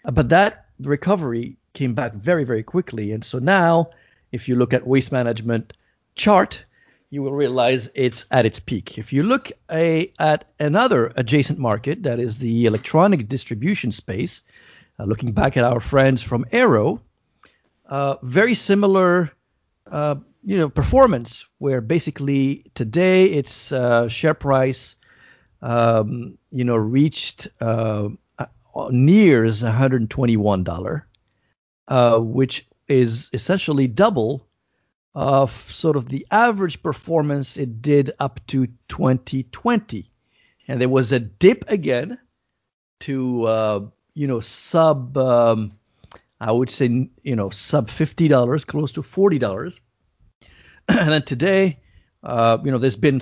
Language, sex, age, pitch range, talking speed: English, male, 50-69, 115-150 Hz, 130 wpm